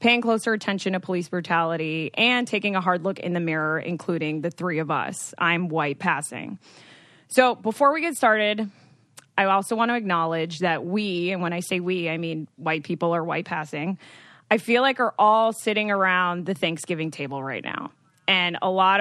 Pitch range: 170-215 Hz